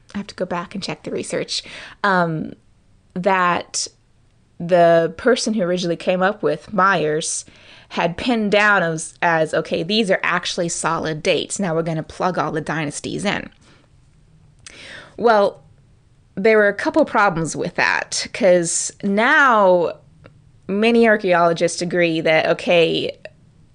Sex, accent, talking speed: female, American, 135 wpm